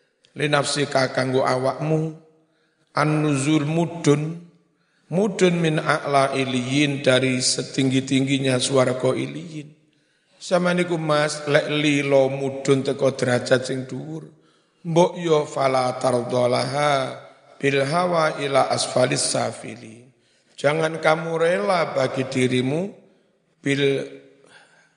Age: 50-69